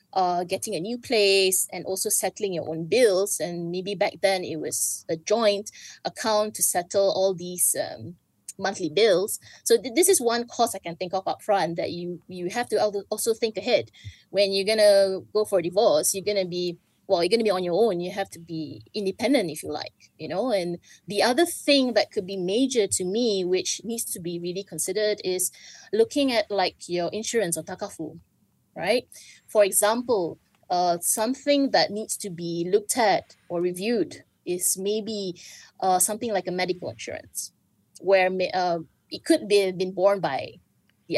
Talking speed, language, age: 190 wpm, English, 20-39